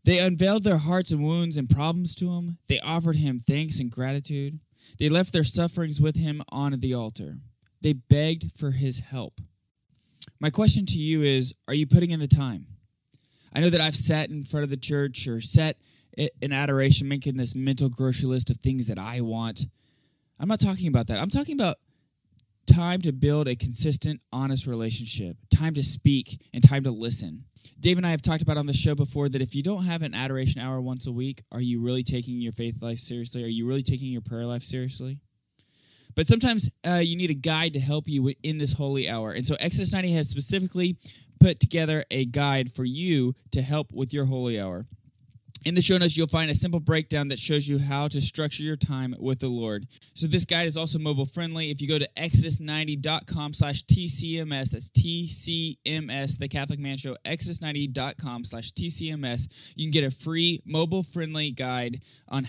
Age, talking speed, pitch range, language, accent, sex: 20-39, 200 wpm, 125-155 Hz, English, American, male